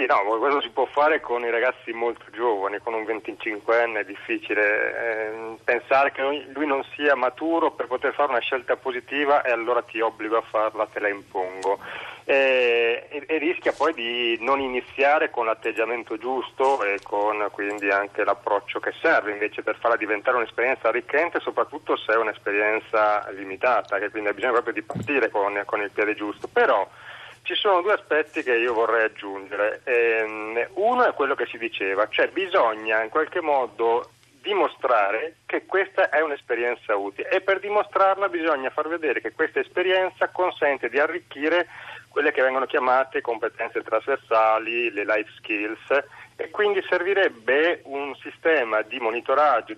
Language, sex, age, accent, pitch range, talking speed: Italian, male, 30-49, native, 110-160 Hz, 160 wpm